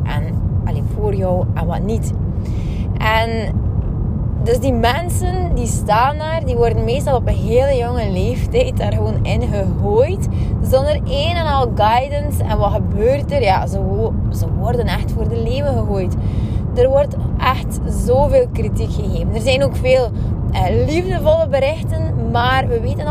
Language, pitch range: Dutch, 95-110 Hz